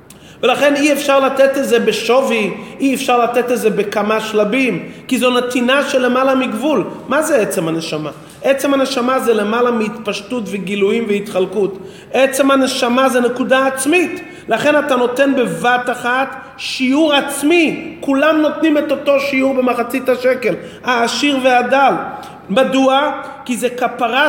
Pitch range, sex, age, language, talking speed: 205-270 Hz, male, 30-49, Hebrew, 140 wpm